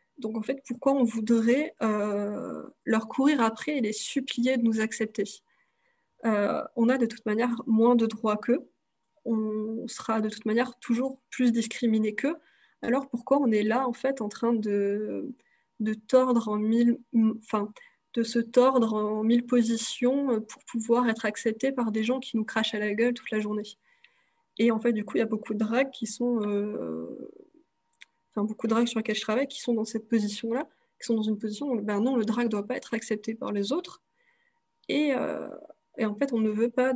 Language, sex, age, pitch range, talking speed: French, female, 20-39, 220-255 Hz, 205 wpm